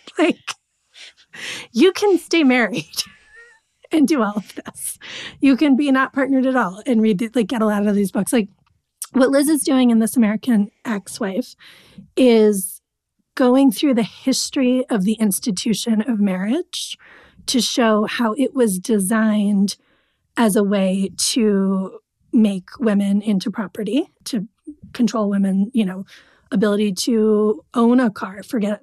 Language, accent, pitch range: English, American, 210-255 Hz